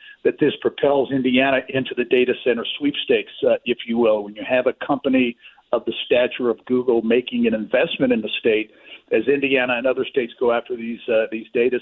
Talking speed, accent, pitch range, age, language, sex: 205 wpm, American, 115-150 Hz, 50-69, English, male